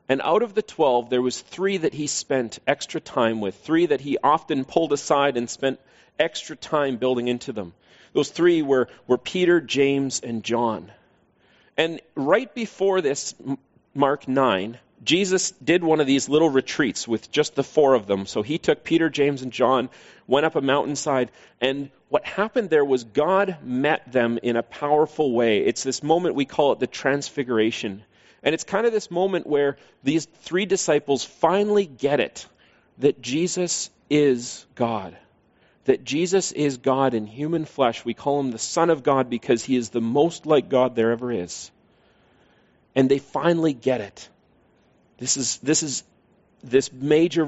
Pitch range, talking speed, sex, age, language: 125-160 Hz, 175 wpm, male, 40-59, English